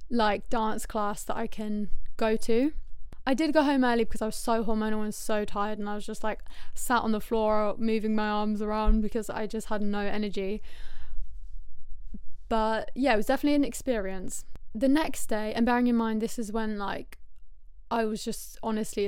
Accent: British